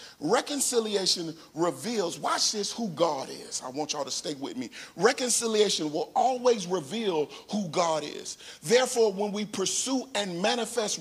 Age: 40-59